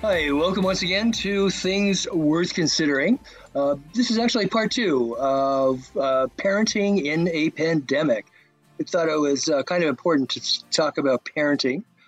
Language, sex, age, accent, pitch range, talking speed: English, male, 50-69, American, 140-185 Hz, 160 wpm